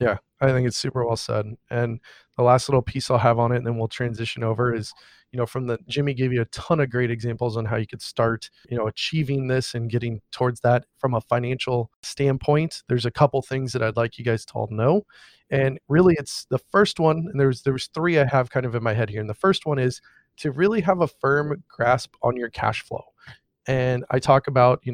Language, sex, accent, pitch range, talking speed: English, male, American, 115-140 Hz, 245 wpm